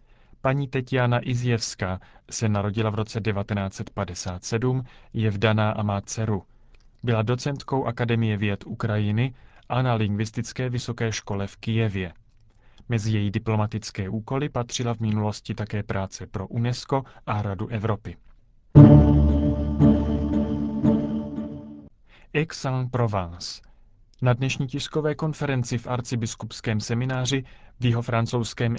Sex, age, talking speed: male, 30-49, 105 wpm